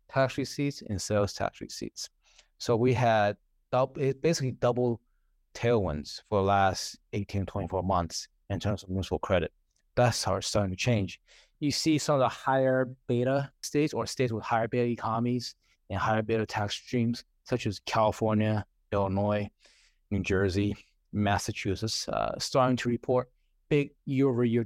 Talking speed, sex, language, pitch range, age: 150 wpm, male, English, 100-125 Hz, 30-49